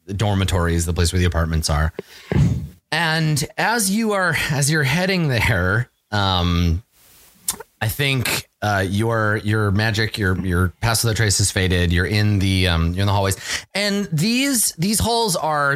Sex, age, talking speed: male, 30-49, 170 wpm